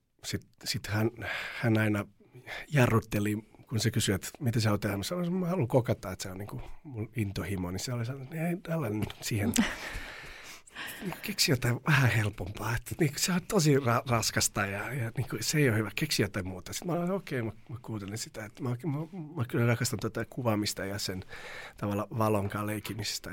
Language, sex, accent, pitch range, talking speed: Finnish, male, native, 105-130 Hz, 200 wpm